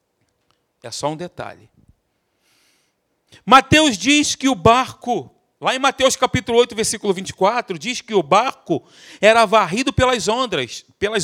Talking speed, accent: 125 wpm, Brazilian